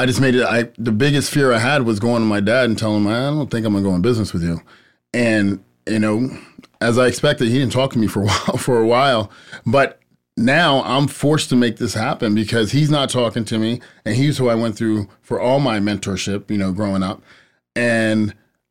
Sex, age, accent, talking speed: male, 30-49, American, 235 wpm